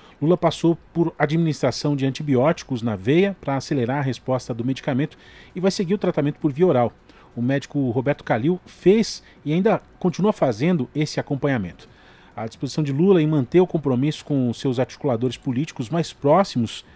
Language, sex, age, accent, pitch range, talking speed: Portuguese, male, 40-59, Brazilian, 130-170 Hz, 165 wpm